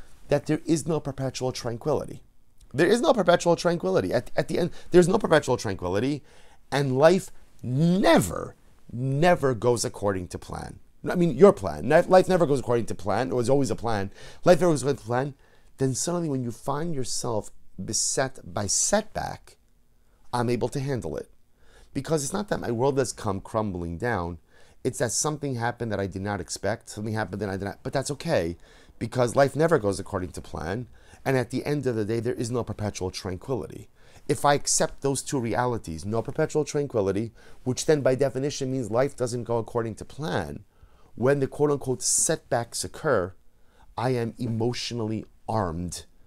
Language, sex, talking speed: English, male, 180 wpm